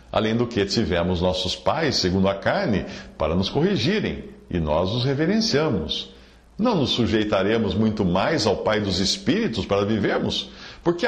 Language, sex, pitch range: Portuguese, male, 85-120 Hz